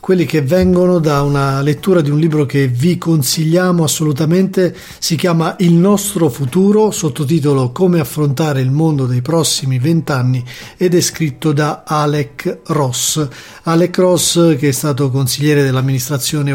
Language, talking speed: Italian, 140 wpm